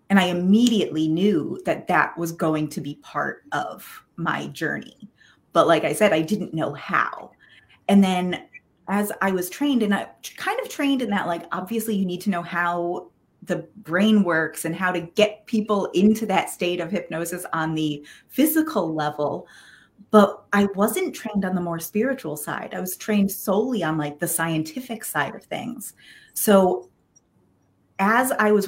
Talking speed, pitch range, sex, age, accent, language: 175 wpm, 155-205 Hz, female, 30-49, American, English